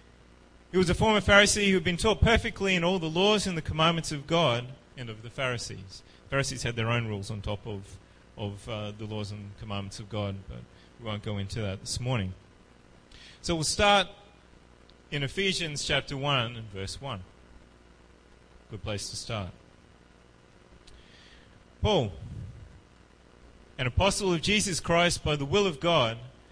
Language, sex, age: English, male, 30-49